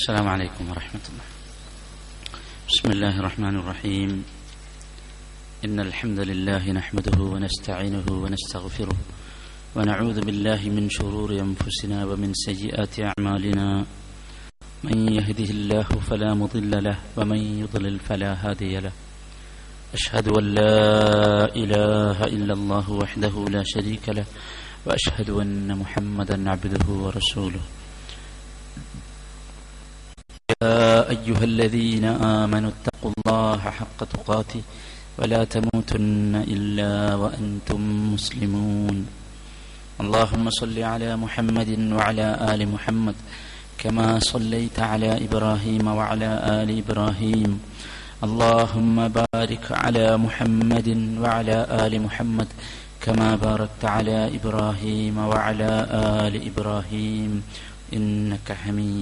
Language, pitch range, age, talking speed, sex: Malayalam, 100-110 Hz, 30-49, 50 wpm, male